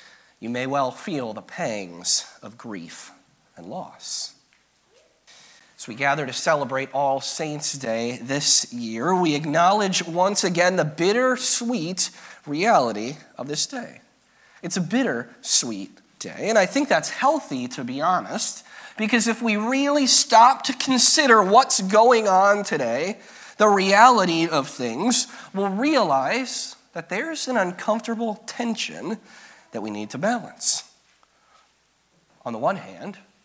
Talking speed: 135 wpm